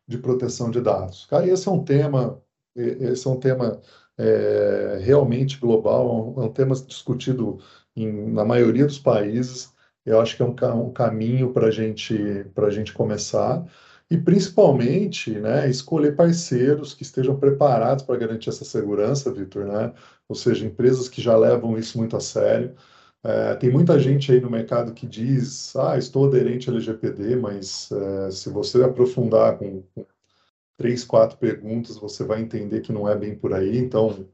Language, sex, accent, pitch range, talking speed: Portuguese, male, Brazilian, 110-130 Hz, 165 wpm